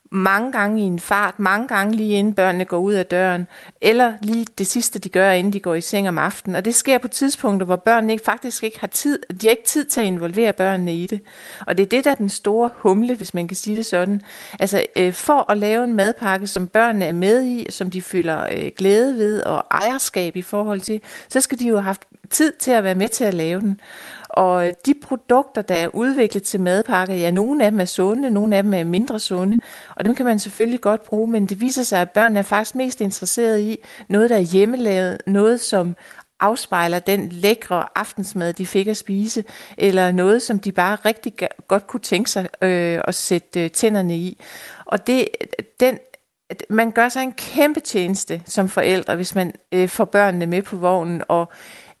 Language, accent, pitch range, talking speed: Danish, native, 185-230 Hz, 205 wpm